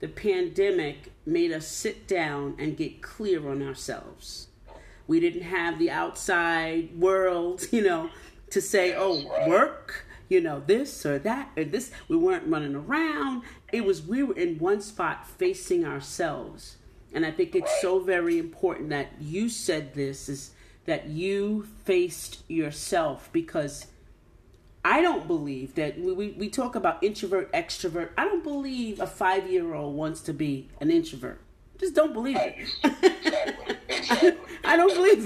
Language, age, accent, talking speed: English, 40-59, American, 150 wpm